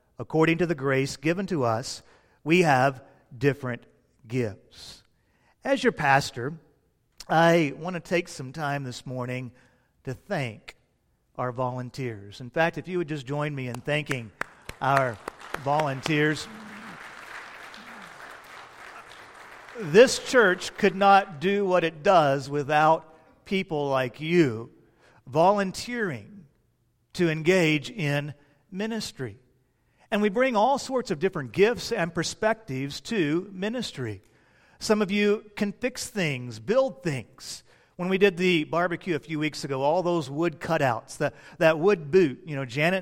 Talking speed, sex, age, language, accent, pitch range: 130 wpm, male, 50-69, English, American, 140-200 Hz